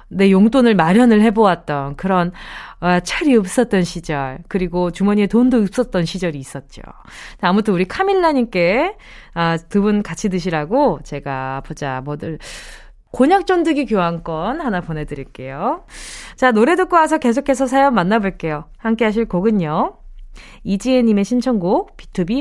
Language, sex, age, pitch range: Korean, female, 20-39, 180-270 Hz